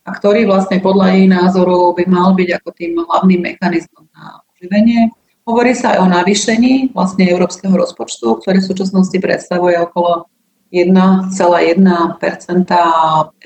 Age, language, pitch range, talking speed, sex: 30-49, Slovak, 170-200 Hz, 130 wpm, female